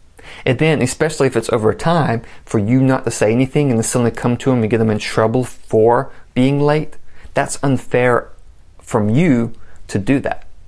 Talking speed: 190 wpm